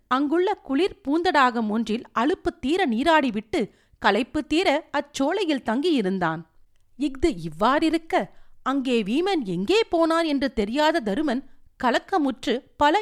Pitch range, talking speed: 215-315 Hz, 100 wpm